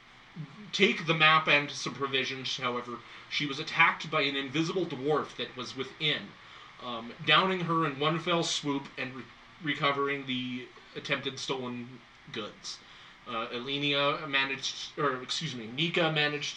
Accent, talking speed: American, 140 wpm